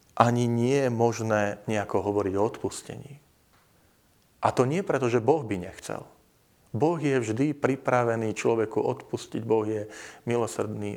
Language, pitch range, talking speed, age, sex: Slovak, 100-120 Hz, 135 wpm, 40-59, male